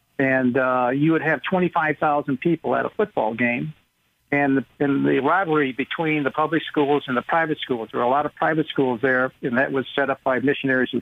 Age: 60-79